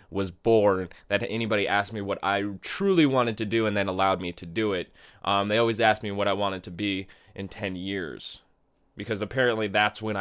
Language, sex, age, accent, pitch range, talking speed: English, male, 20-39, American, 95-115 Hz, 210 wpm